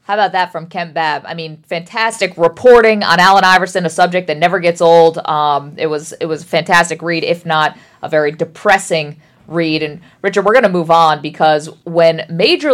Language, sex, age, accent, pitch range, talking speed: English, female, 40-59, American, 165-215 Hz, 205 wpm